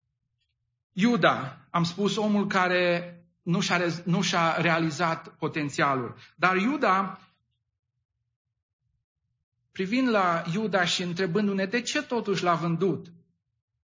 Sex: male